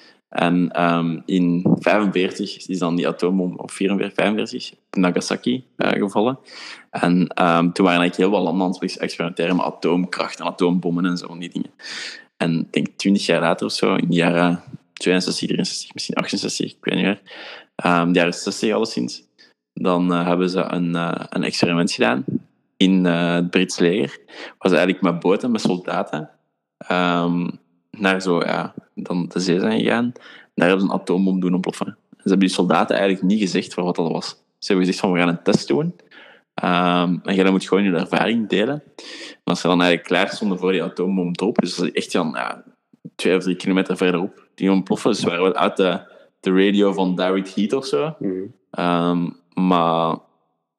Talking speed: 190 wpm